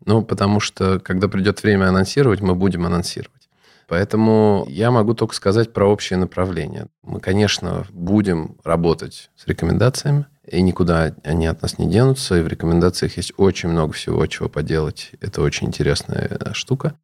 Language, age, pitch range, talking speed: Russian, 20-39, 85-105 Hz, 155 wpm